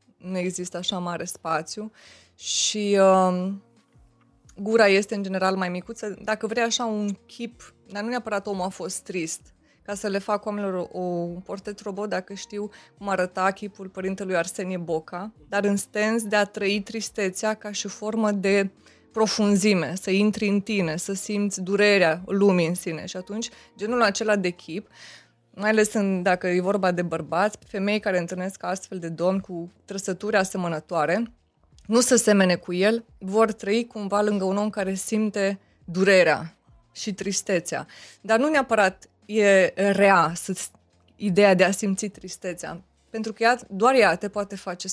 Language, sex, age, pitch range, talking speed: Romanian, female, 20-39, 185-210 Hz, 165 wpm